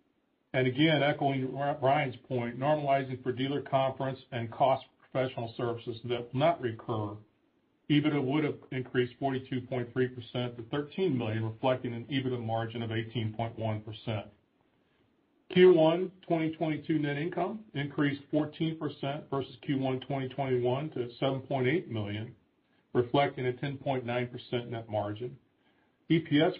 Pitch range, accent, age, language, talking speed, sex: 120-145 Hz, American, 40-59, English, 110 wpm, male